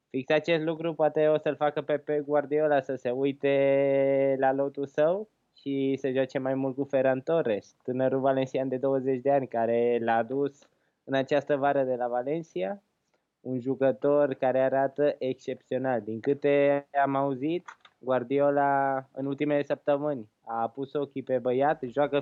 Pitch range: 130-155 Hz